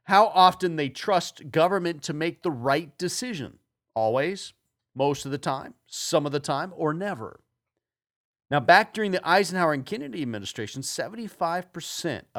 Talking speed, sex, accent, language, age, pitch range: 145 wpm, male, American, English, 40-59, 125-175 Hz